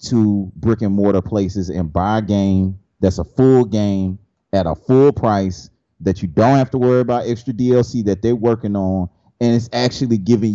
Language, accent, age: English, American, 30-49